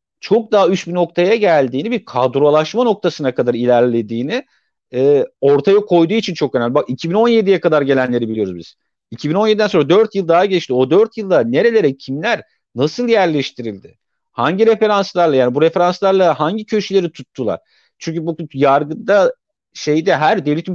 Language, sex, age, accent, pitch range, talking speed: Turkish, male, 50-69, native, 145-210 Hz, 140 wpm